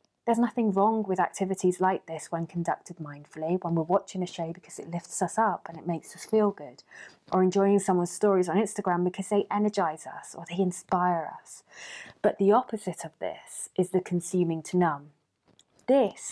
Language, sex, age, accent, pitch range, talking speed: English, female, 20-39, British, 160-195 Hz, 190 wpm